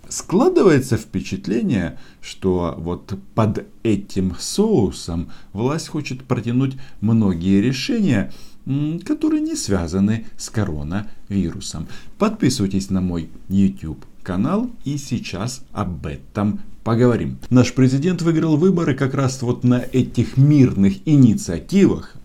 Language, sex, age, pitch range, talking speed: Russian, male, 50-69, 95-135 Hz, 95 wpm